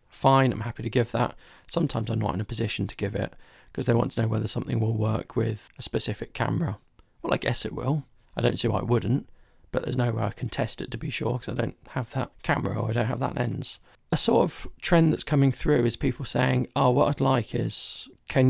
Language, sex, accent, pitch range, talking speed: English, male, British, 110-125 Hz, 255 wpm